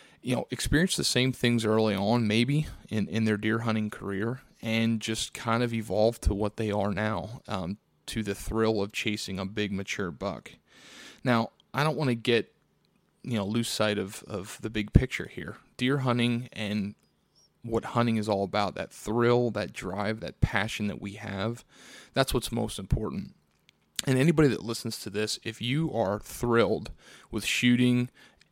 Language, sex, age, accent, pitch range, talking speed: English, male, 30-49, American, 105-120 Hz, 175 wpm